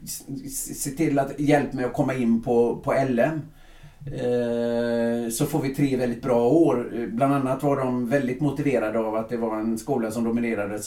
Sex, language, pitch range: male, English, 115-145 Hz